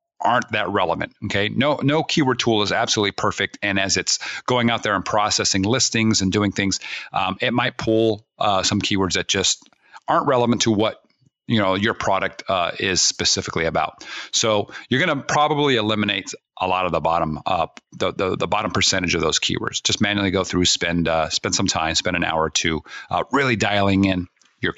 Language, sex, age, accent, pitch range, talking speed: English, male, 40-59, American, 95-125 Hz, 200 wpm